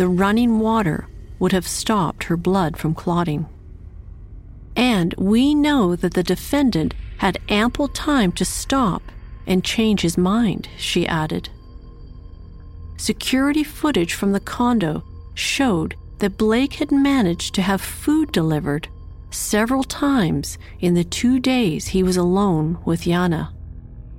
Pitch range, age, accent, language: 160-235 Hz, 50-69, American, English